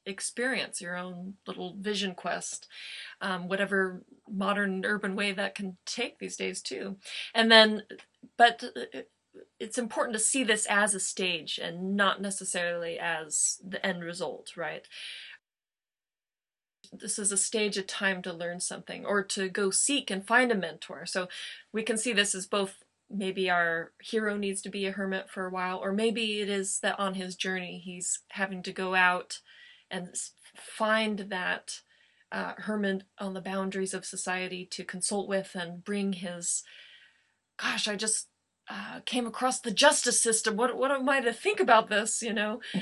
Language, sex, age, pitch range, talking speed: English, female, 20-39, 185-225 Hz, 165 wpm